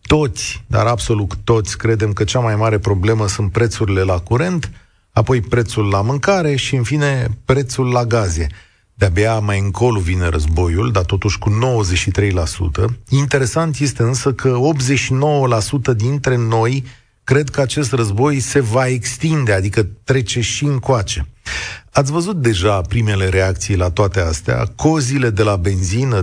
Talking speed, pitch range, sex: 145 wpm, 105-140 Hz, male